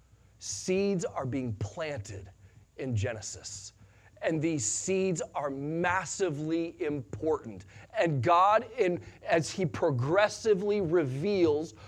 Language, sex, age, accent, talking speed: English, male, 40-59, American, 95 wpm